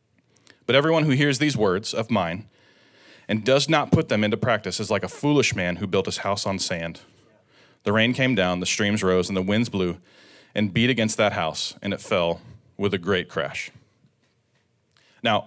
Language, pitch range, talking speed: English, 95-125 Hz, 195 wpm